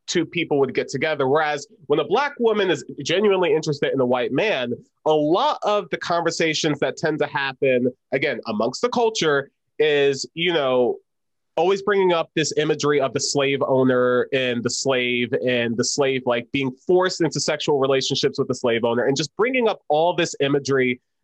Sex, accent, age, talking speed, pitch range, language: male, American, 30-49, 185 wpm, 135-180 Hz, English